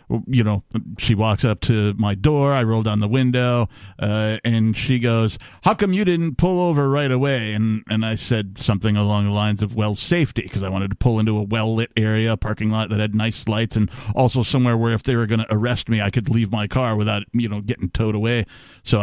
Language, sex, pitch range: English, male, 110-140 Hz